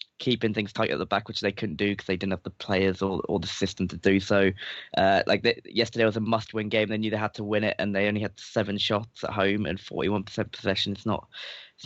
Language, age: English, 20-39